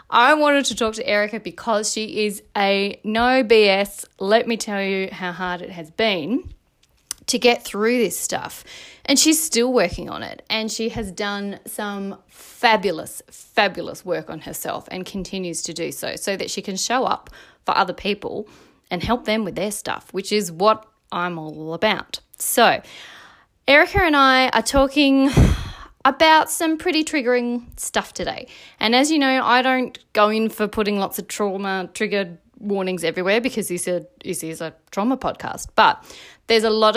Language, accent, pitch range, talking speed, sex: English, Australian, 185-240 Hz, 170 wpm, female